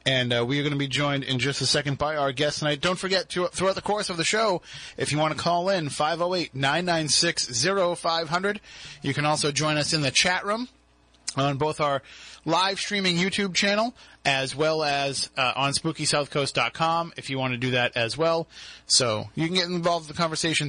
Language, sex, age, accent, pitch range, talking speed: English, male, 30-49, American, 140-180 Hz, 205 wpm